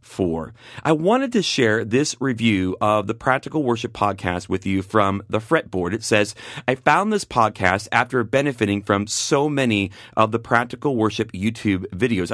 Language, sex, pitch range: English, male, 105-130 Hz